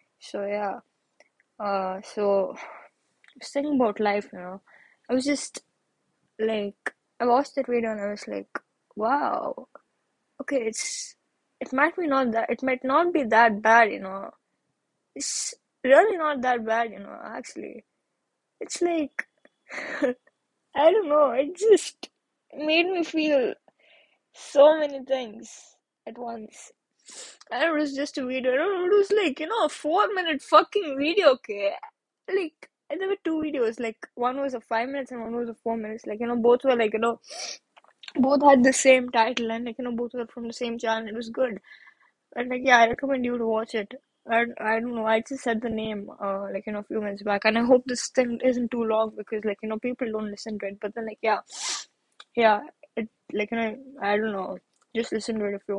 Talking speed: 205 wpm